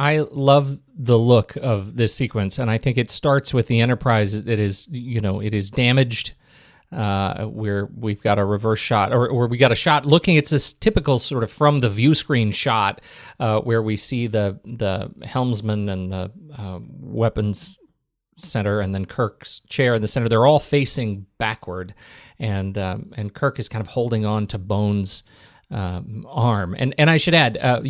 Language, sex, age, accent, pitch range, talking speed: English, male, 40-59, American, 105-140 Hz, 190 wpm